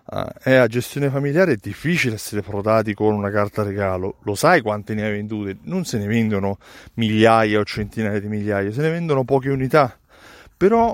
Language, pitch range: Italian, 105-155 Hz